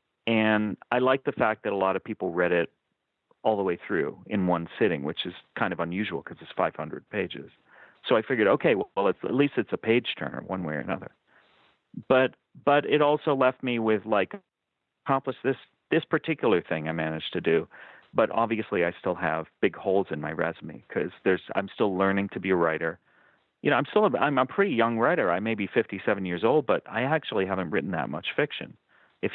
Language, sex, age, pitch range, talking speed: English, male, 40-59, 90-125 Hz, 215 wpm